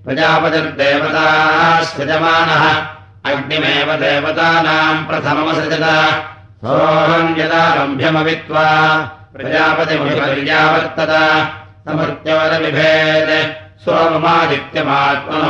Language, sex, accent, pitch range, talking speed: Russian, male, Indian, 145-160 Hz, 75 wpm